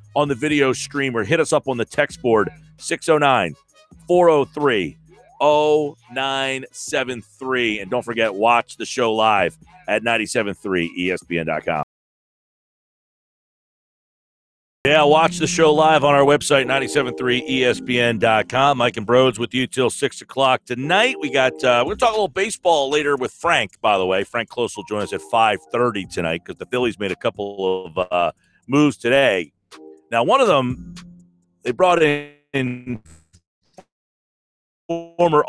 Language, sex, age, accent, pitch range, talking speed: English, male, 40-59, American, 100-145 Hz, 130 wpm